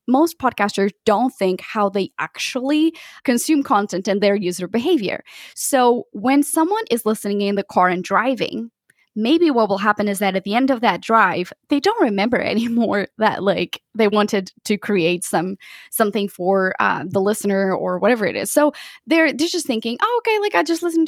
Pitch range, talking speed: 200-285 Hz, 190 wpm